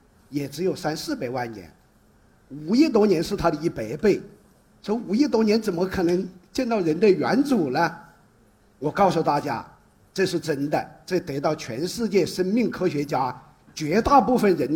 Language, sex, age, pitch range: Chinese, male, 50-69, 160-220 Hz